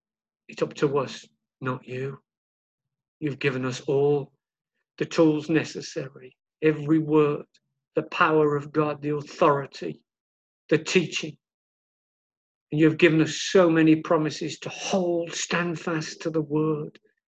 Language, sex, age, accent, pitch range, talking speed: English, male, 50-69, British, 150-185 Hz, 130 wpm